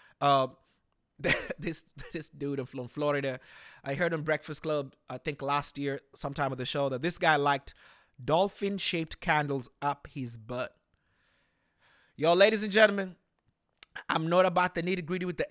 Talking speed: 165 wpm